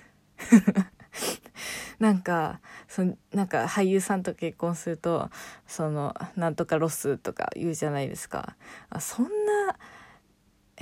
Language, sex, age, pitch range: Japanese, female, 20-39, 155-205 Hz